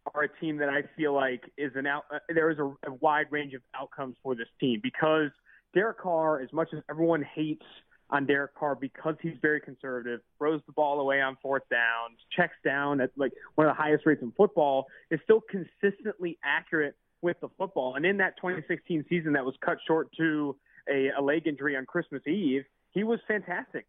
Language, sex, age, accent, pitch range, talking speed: English, male, 30-49, American, 145-180 Hz, 205 wpm